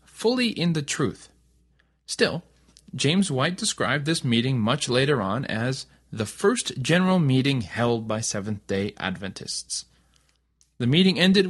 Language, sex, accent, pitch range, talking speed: English, male, American, 110-170 Hz, 130 wpm